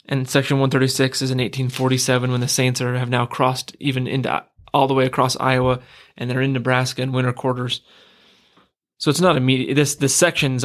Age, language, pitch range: 20-39, English, 130-140 Hz